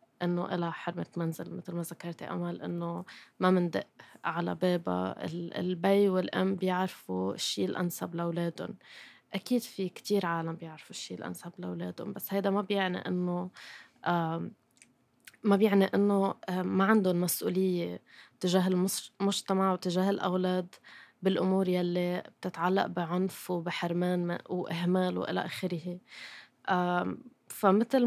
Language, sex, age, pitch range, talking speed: Arabic, female, 20-39, 175-190 Hz, 110 wpm